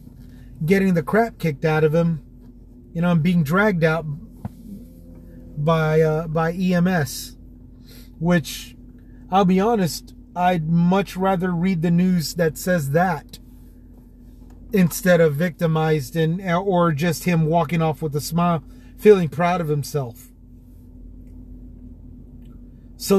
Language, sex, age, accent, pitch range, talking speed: English, male, 30-49, American, 125-190 Hz, 120 wpm